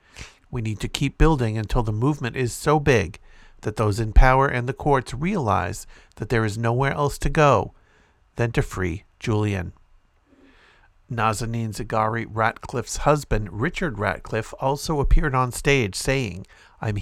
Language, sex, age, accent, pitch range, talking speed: English, male, 50-69, American, 105-130 Hz, 150 wpm